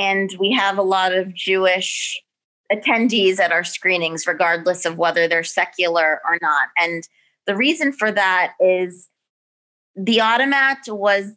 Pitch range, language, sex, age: 185-220 Hz, English, female, 30-49